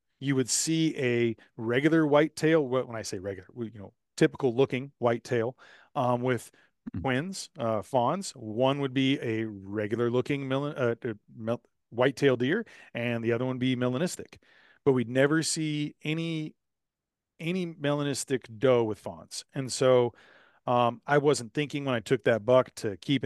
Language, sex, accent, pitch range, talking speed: English, male, American, 115-135 Hz, 165 wpm